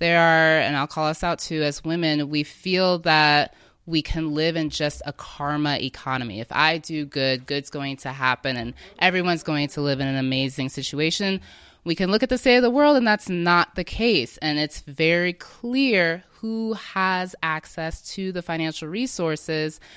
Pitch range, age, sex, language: 145-180 Hz, 20-39, female, English